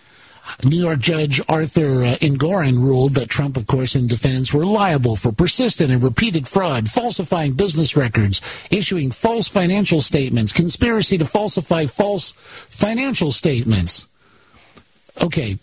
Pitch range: 130-175 Hz